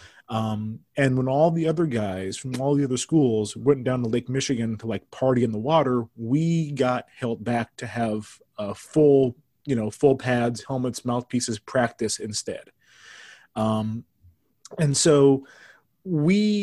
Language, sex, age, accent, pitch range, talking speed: English, male, 30-49, American, 120-145 Hz, 155 wpm